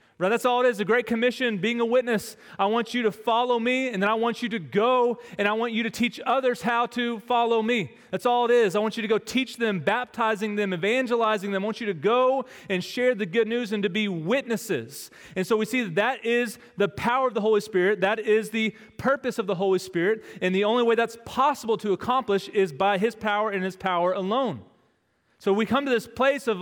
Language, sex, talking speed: English, male, 240 wpm